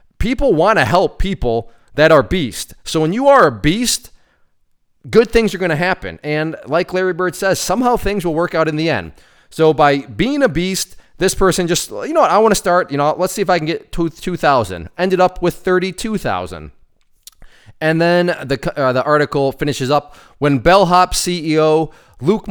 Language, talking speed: English, 190 wpm